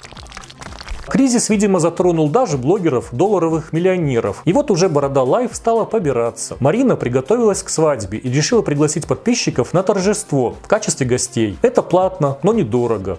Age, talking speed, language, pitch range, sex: 30-49, 140 wpm, Russian, 130-190 Hz, male